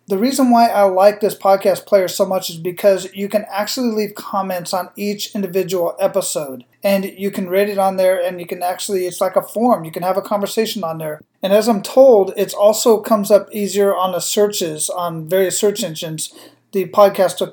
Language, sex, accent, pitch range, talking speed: English, male, American, 180-210 Hz, 210 wpm